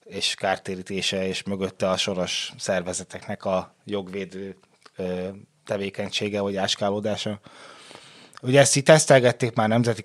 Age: 20-39